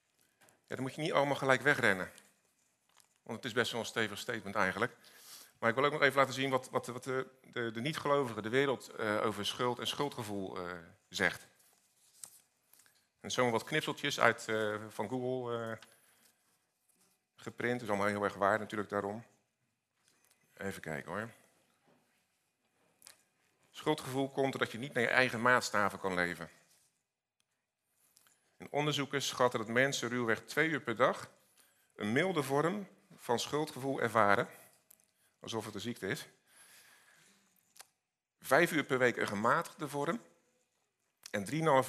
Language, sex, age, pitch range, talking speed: Dutch, male, 50-69, 105-135 Hz, 150 wpm